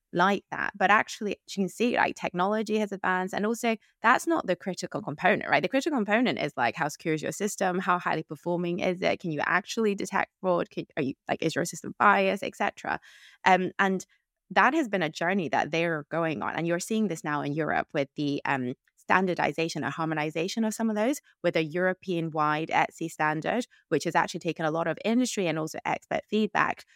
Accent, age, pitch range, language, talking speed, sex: British, 20-39, 155-195 Hz, English, 205 wpm, female